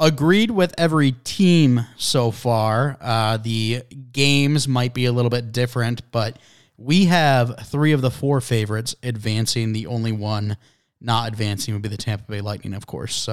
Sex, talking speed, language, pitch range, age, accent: male, 170 wpm, English, 115-150 Hz, 20-39, American